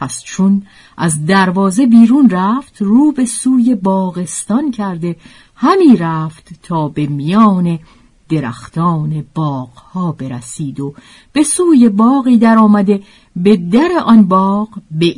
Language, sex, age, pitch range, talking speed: Persian, female, 50-69, 165-235 Hz, 120 wpm